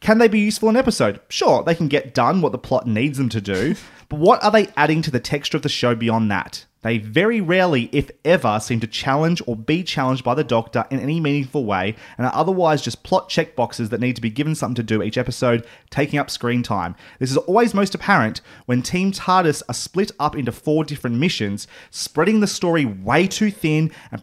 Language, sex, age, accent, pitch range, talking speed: English, male, 30-49, Australian, 120-160 Hz, 230 wpm